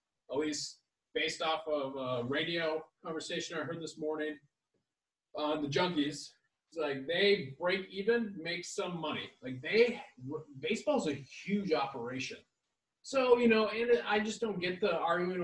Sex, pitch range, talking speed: male, 145-185 Hz, 150 wpm